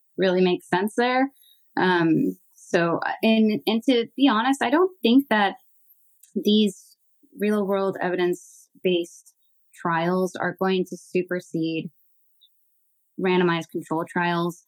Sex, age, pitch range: female, 20-39, 165-205 Hz